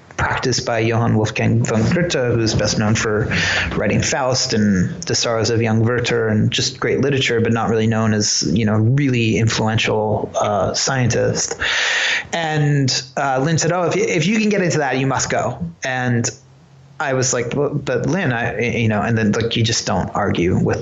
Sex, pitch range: male, 115-135 Hz